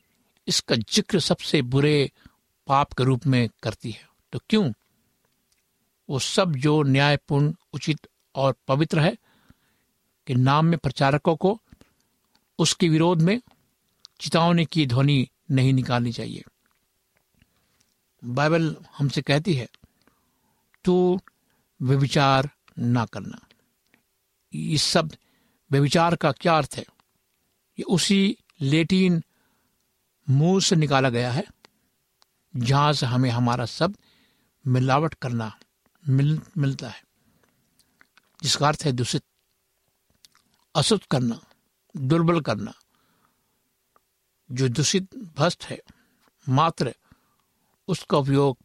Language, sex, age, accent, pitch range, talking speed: Hindi, male, 60-79, native, 130-170 Hz, 95 wpm